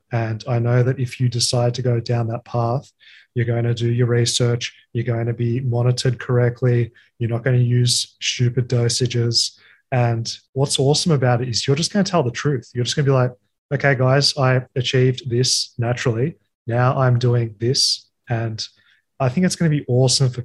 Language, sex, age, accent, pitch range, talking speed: English, male, 20-39, Australian, 120-130 Hz, 205 wpm